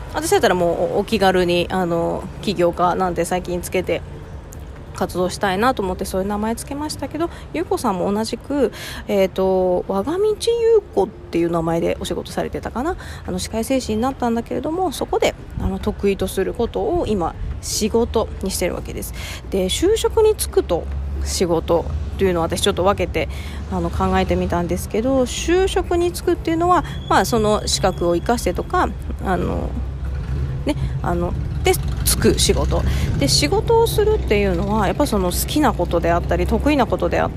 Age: 20-39